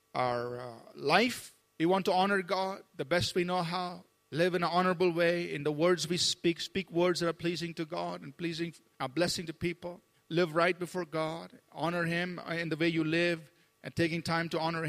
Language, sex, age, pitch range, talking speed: English, male, 50-69, 150-180 Hz, 210 wpm